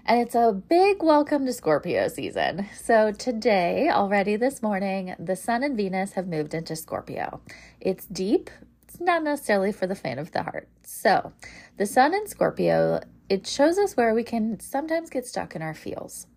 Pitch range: 185-255 Hz